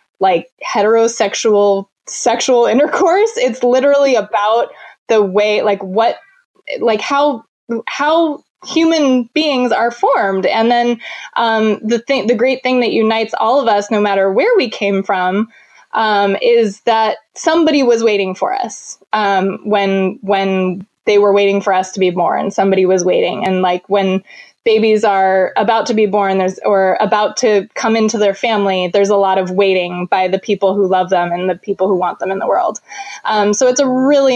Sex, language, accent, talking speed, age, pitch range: female, English, American, 175 wpm, 20-39, 195-250 Hz